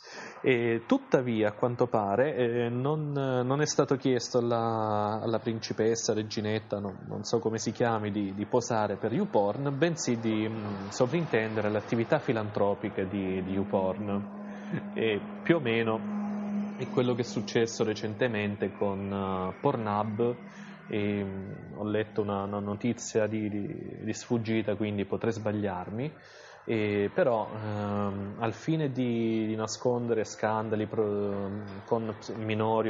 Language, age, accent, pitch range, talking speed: Italian, 20-39, native, 105-125 Hz, 115 wpm